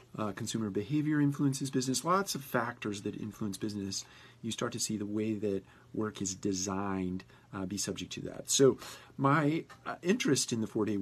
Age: 40-59